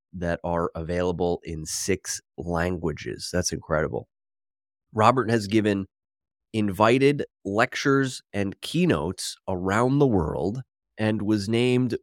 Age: 30-49